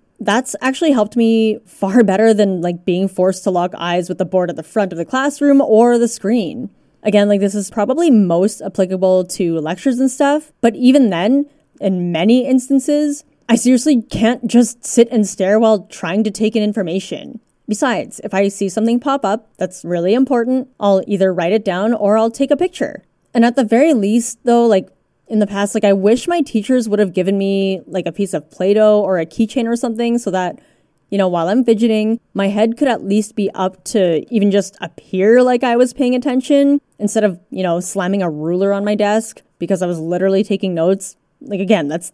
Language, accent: English, American